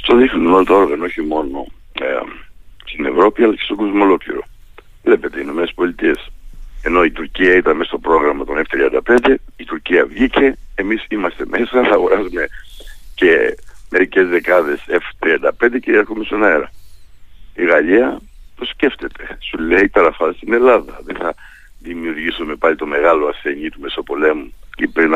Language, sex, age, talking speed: Greek, male, 60-79, 150 wpm